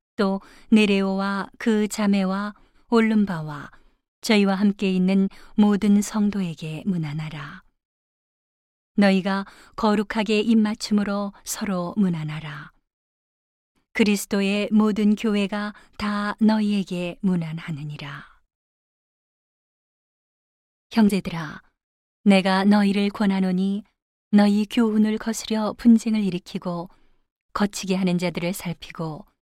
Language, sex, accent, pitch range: Korean, female, native, 185-210 Hz